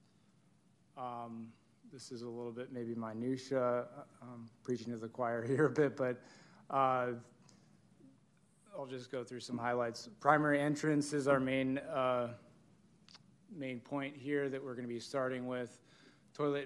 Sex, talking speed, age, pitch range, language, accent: male, 145 wpm, 20-39, 120-135 Hz, English, American